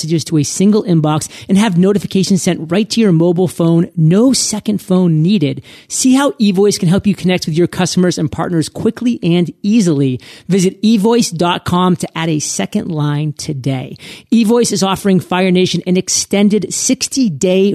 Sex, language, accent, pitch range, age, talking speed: male, English, American, 165-205 Hz, 30-49, 160 wpm